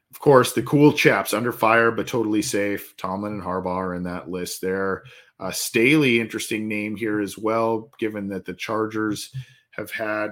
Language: English